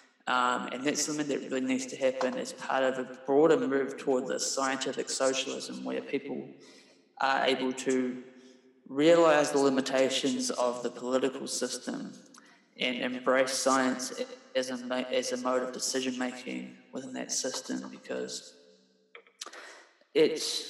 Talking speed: 135 wpm